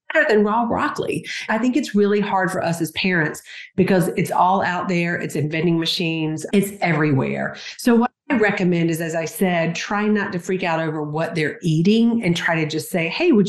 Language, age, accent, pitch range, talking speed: English, 40-59, American, 160-205 Hz, 205 wpm